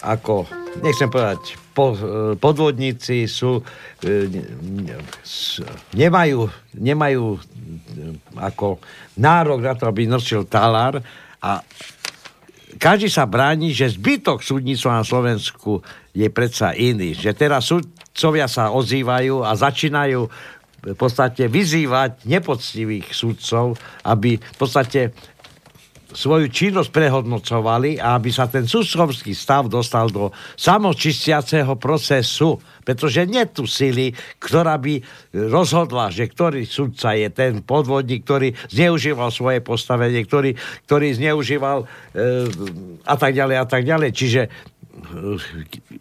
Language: Slovak